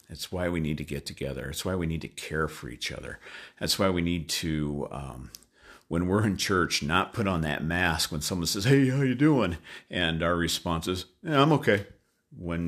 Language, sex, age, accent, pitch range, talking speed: English, male, 50-69, American, 75-90 Hz, 220 wpm